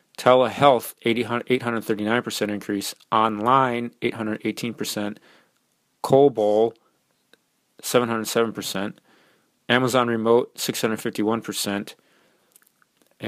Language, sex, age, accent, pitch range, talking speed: English, male, 30-49, American, 100-115 Hz, 45 wpm